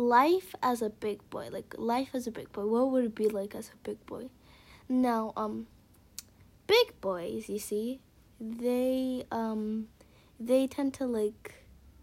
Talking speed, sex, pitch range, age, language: 160 wpm, female, 215-255 Hz, 10-29, English